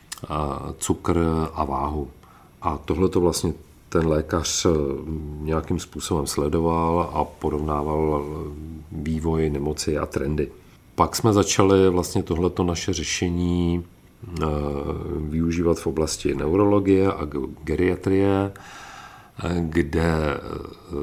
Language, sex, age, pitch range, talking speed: Czech, male, 40-59, 75-85 Hz, 90 wpm